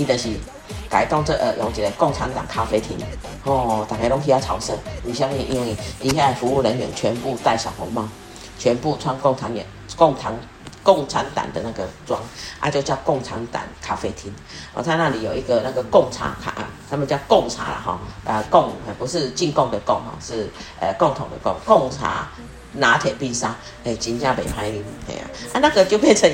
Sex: female